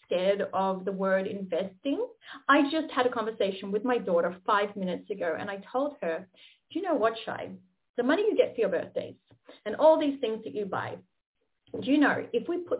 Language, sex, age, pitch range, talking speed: English, female, 30-49, 210-320 Hz, 210 wpm